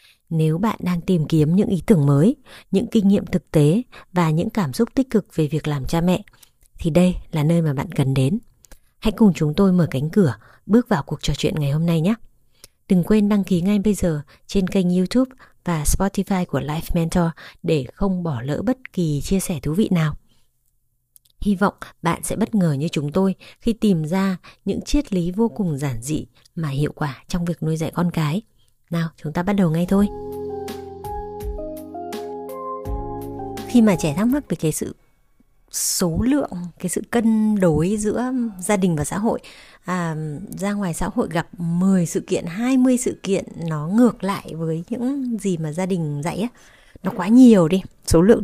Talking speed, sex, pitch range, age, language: 200 wpm, female, 155-210 Hz, 20-39, Vietnamese